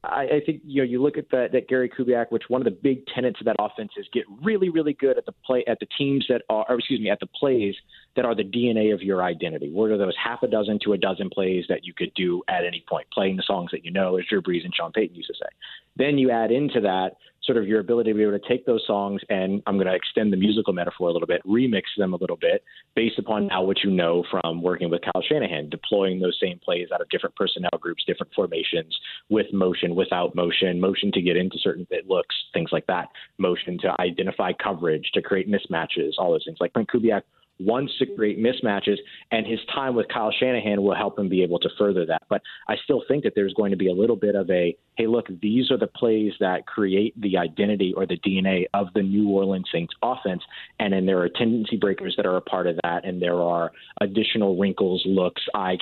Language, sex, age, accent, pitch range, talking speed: English, male, 30-49, American, 95-125 Hz, 245 wpm